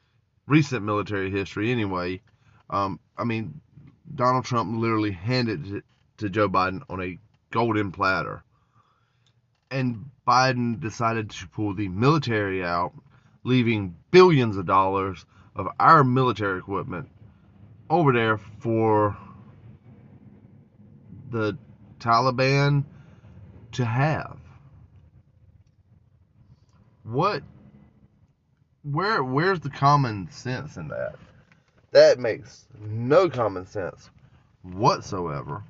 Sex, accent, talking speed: male, American, 95 wpm